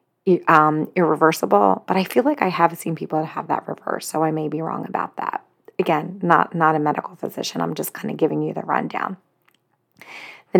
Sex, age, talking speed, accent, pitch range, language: female, 30-49, 205 wpm, American, 160-185 Hz, English